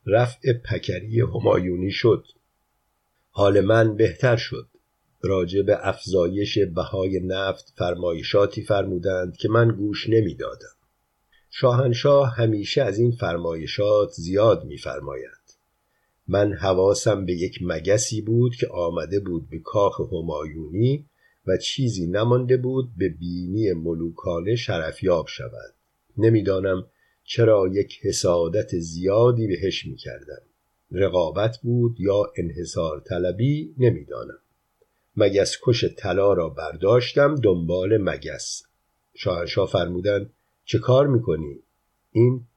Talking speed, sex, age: 100 wpm, male, 50-69